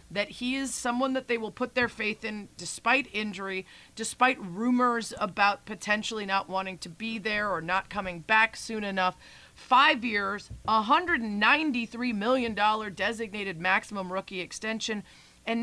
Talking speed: 140 wpm